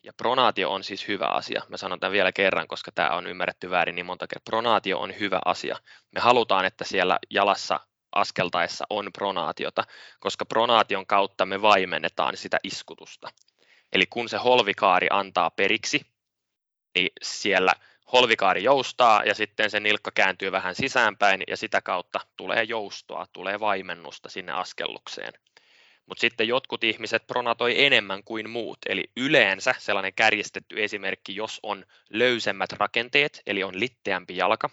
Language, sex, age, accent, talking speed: Finnish, male, 20-39, native, 150 wpm